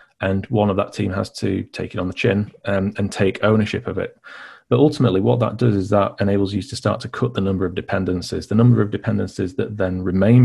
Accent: British